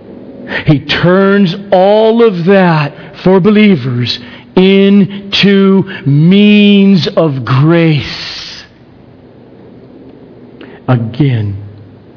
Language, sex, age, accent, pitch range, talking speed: English, male, 50-69, American, 125-200 Hz, 60 wpm